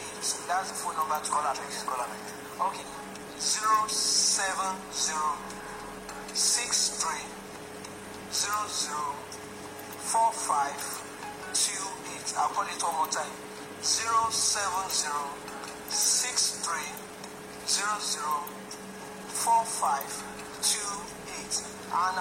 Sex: male